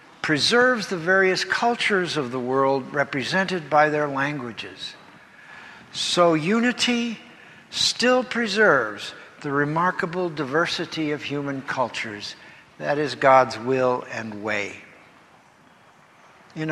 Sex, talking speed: male, 100 wpm